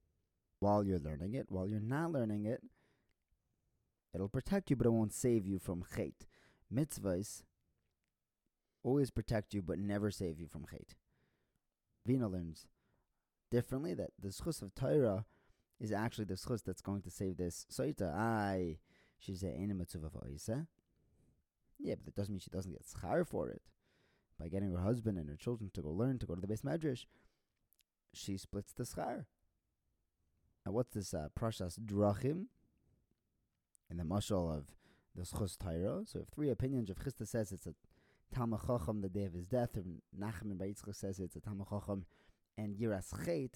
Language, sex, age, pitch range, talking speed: English, male, 30-49, 90-115 Hz, 165 wpm